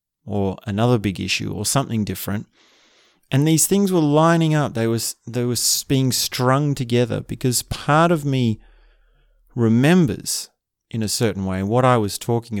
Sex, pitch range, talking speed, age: male, 100-125 Hz, 155 wpm, 30-49